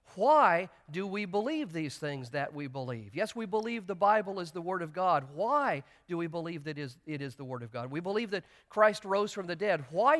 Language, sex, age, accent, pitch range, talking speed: English, male, 50-69, American, 155-205 Hz, 230 wpm